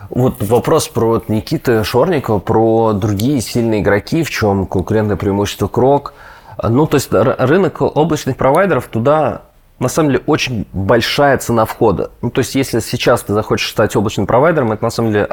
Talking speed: 170 wpm